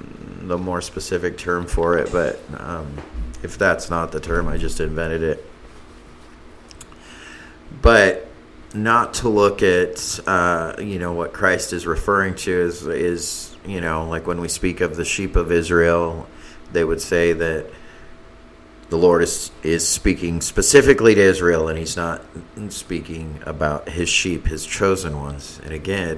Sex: male